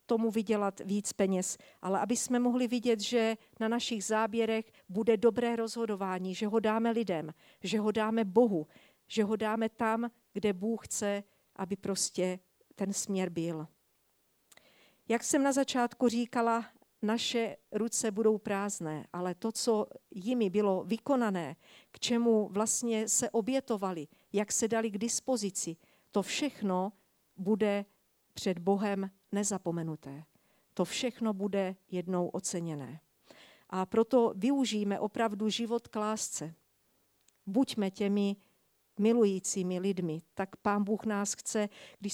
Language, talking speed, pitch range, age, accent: Czech, 125 wpm, 195-230 Hz, 50-69, native